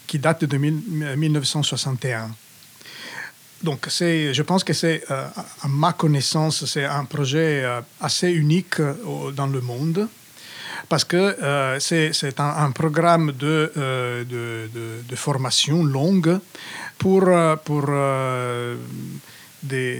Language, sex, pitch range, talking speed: French, male, 130-160 Hz, 105 wpm